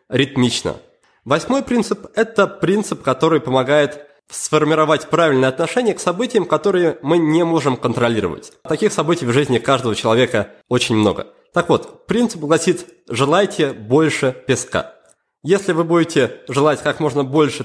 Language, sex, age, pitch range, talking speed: Russian, male, 20-39, 140-205 Hz, 135 wpm